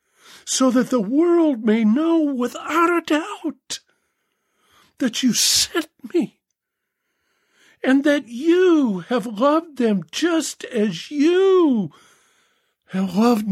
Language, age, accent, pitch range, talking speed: English, 50-69, American, 200-295 Hz, 105 wpm